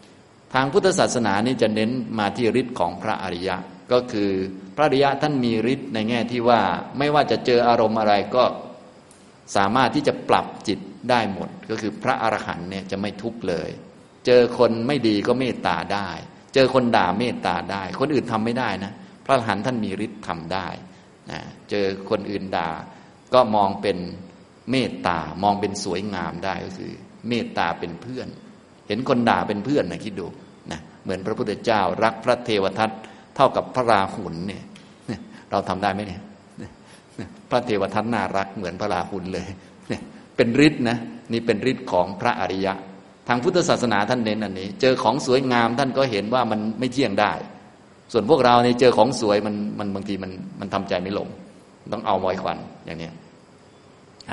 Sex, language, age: male, Thai, 30-49